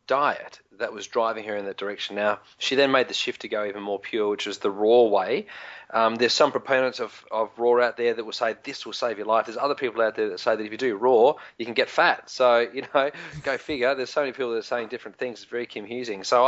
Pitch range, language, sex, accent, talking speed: 110-130 Hz, English, male, Australian, 275 wpm